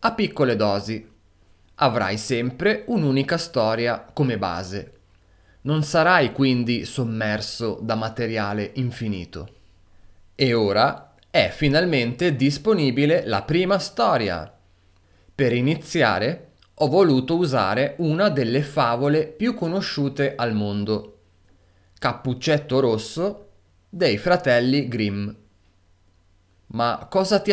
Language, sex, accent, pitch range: Italian, male, native, 100-155 Hz